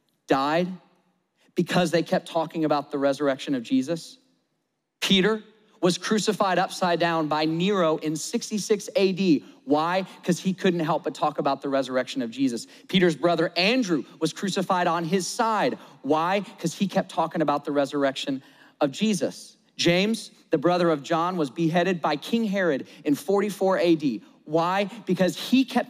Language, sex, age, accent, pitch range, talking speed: English, male, 40-59, American, 160-220 Hz, 155 wpm